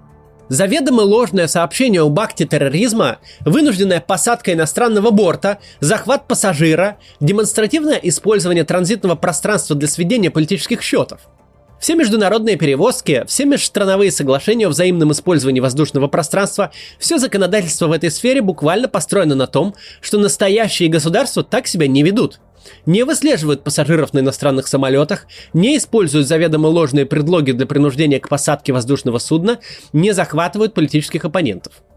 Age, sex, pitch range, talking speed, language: 20-39, male, 155-225 Hz, 130 wpm, Russian